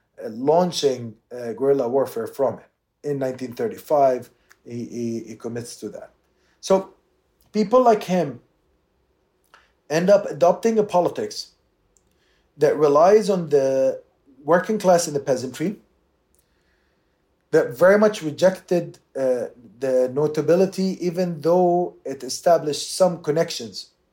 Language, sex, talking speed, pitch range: English, male, 110 wpm, 125-180 Hz